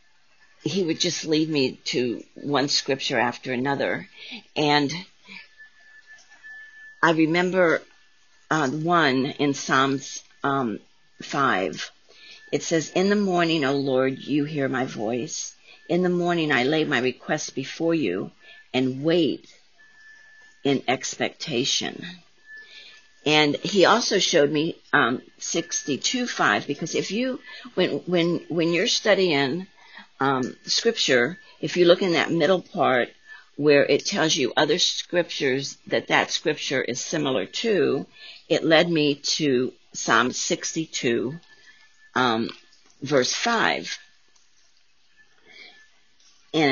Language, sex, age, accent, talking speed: English, female, 50-69, American, 115 wpm